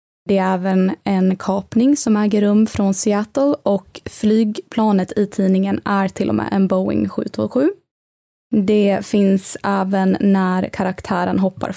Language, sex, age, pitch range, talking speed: Swedish, female, 20-39, 195-245 Hz, 140 wpm